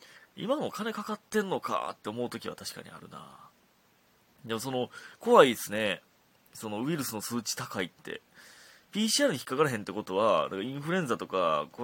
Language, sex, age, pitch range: Japanese, male, 30-49, 100-150 Hz